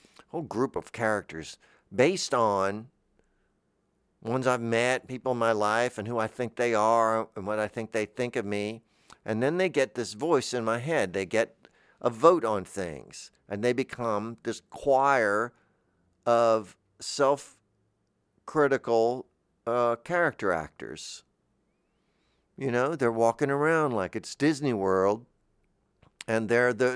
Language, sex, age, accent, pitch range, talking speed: English, male, 50-69, American, 100-135 Hz, 140 wpm